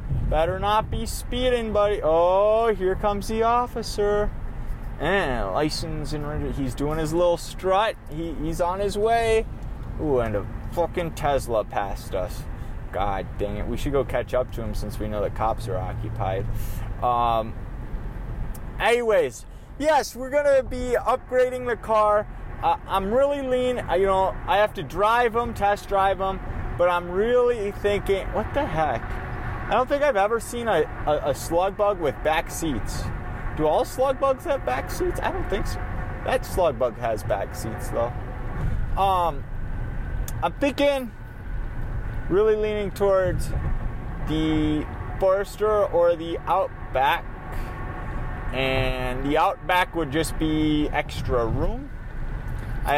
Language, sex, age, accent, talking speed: English, male, 20-39, American, 150 wpm